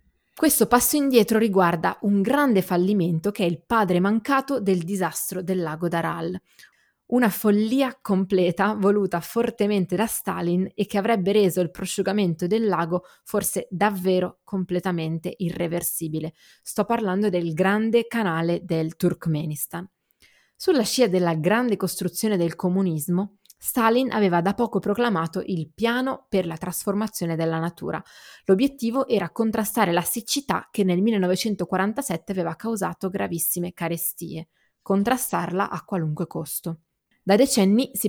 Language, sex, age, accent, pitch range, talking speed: Italian, female, 20-39, native, 175-210 Hz, 130 wpm